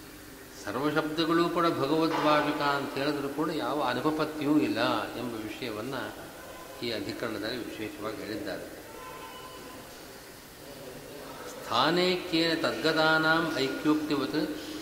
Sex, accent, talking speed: male, native, 75 wpm